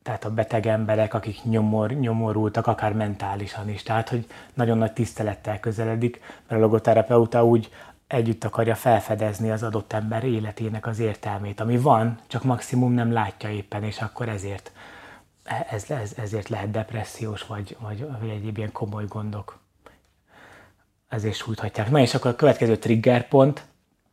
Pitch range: 110-120 Hz